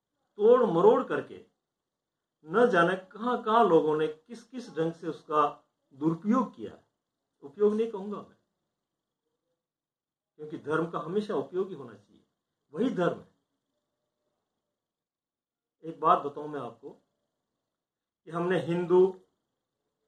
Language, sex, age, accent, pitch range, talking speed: Hindi, male, 50-69, native, 160-220 Hz, 115 wpm